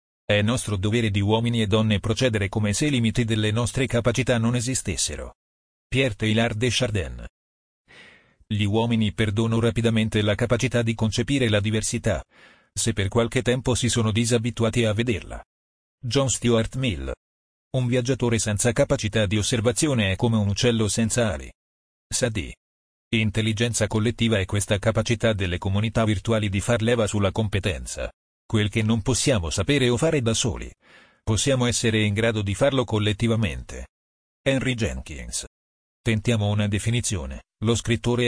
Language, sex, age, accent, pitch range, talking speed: Italian, male, 40-59, native, 100-120 Hz, 145 wpm